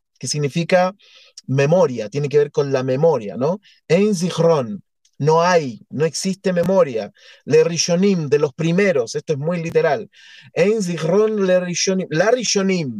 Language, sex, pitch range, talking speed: Spanish, male, 145-190 Hz, 140 wpm